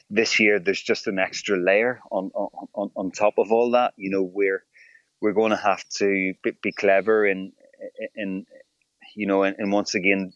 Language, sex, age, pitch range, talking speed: English, male, 30-49, 95-110 Hz, 190 wpm